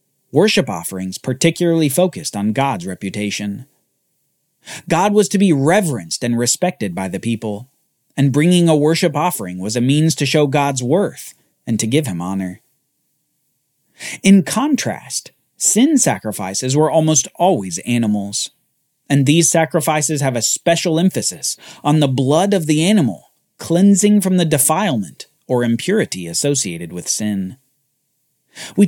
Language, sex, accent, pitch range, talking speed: English, male, American, 125-175 Hz, 135 wpm